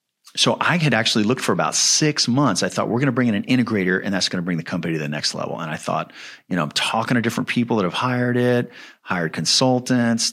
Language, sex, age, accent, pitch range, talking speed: English, male, 40-59, American, 95-120 Hz, 260 wpm